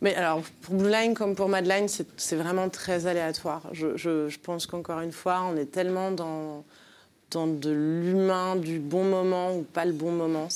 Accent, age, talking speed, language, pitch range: French, 30-49, 200 wpm, French, 165-200 Hz